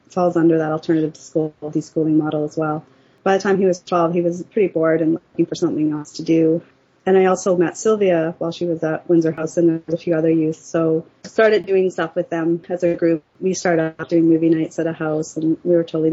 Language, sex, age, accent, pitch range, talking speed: English, female, 30-49, American, 160-180 Hz, 245 wpm